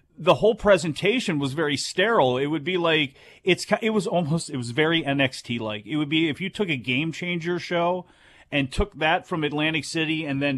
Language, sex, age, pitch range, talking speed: English, male, 40-59, 140-175 Hz, 210 wpm